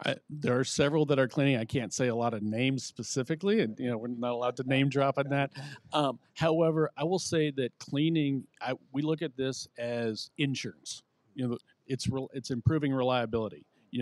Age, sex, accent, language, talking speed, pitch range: 50-69, male, American, English, 205 wpm, 115-140 Hz